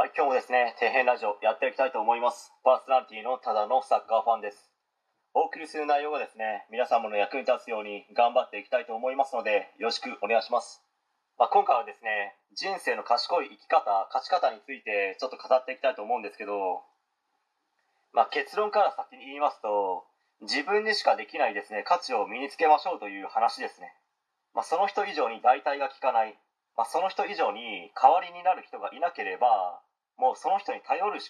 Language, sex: Japanese, male